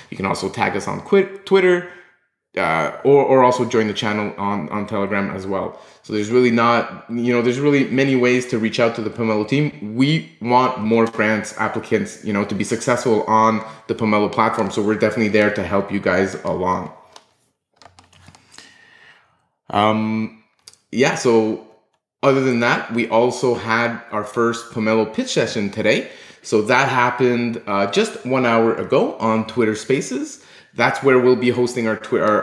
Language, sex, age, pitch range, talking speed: English, male, 20-39, 110-125 Hz, 170 wpm